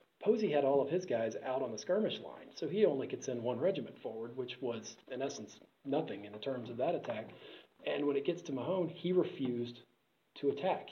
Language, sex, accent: English, male, American